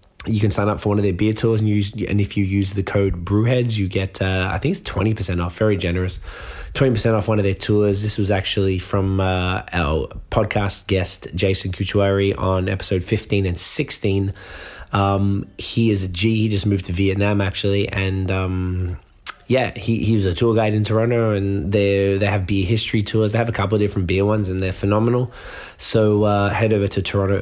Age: 20-39